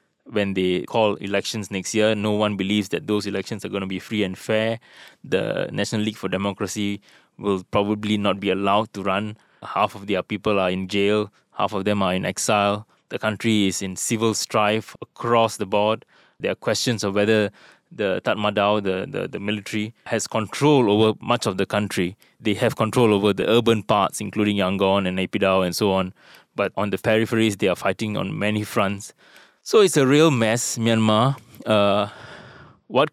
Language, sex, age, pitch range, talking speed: English, male, 20-39, 100-115 Hz, 185 wpm